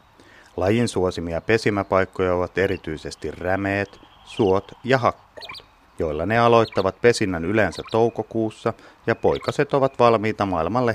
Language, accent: Finnish, native